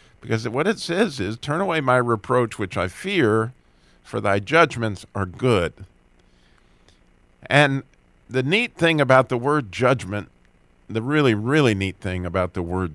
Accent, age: American, 50-69